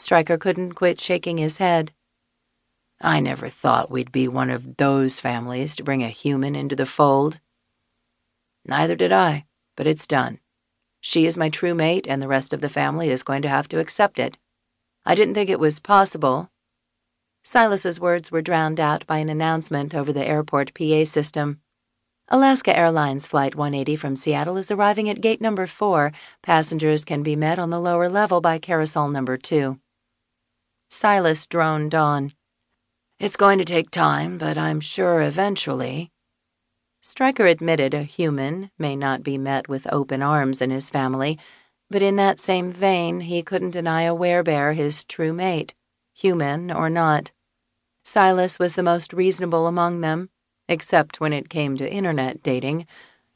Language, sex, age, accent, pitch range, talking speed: English, female, 40-59, American, 140-175 Hz, 165 wpm